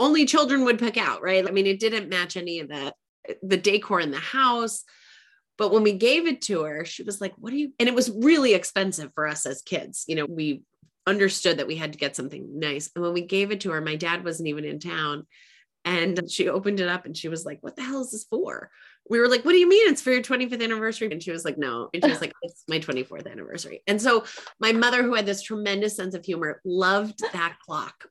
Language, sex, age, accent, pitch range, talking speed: English, female, 30-49, American, 175-225 Hz, 255 wpm